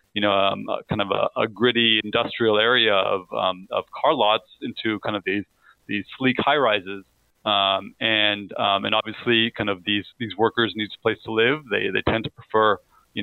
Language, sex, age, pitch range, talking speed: English, male, 30-49, 110-140 Hz, 200 wpm